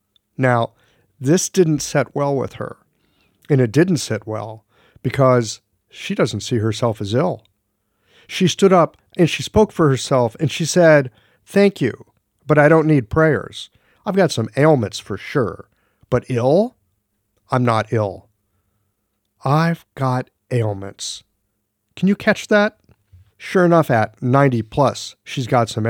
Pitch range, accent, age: 105-140 Hz, American, 50-69